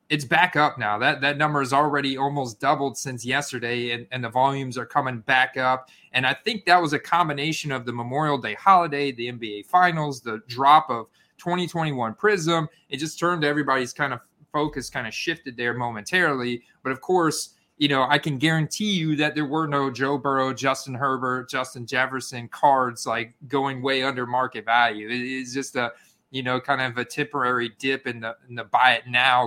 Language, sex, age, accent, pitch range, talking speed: English, male, 30-49, American, 125-155 Hz, 200 wpm